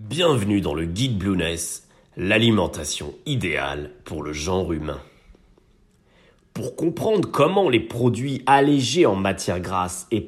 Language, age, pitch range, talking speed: French, 30-49, 95-135 Hz, 125 wpm